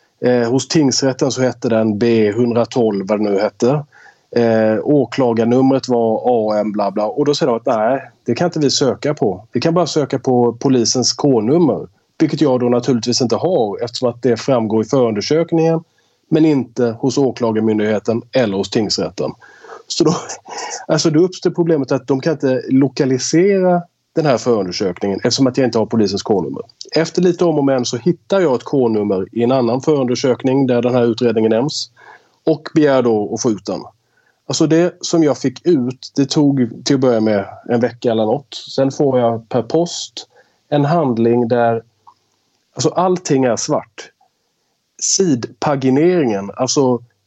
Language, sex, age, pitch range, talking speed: English, male, 30-49, 115-150 Hz, 165 wpm